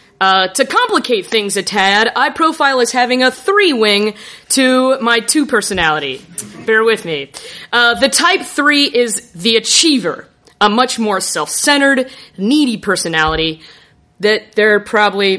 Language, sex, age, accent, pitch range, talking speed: English, female, 30-49, American, 195-260 Hz, 145 wpm